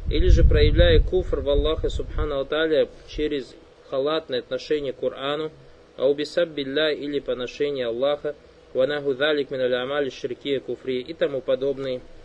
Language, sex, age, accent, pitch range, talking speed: Russian, male, 20-39, native, 130-205 Hz, 125 wpm